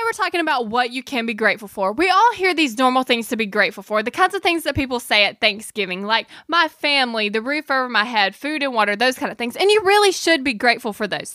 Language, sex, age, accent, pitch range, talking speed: English, female, 10-29, American, 220-300 Hz, 270 wpm